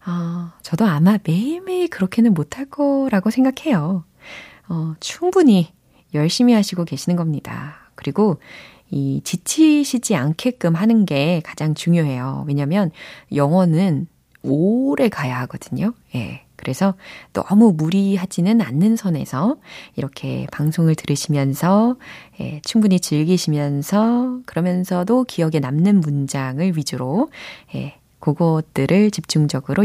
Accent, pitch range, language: native, 150-230 Hz, Korean